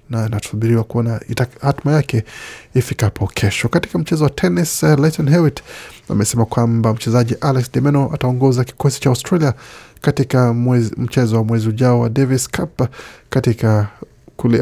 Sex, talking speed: male, 140 wpm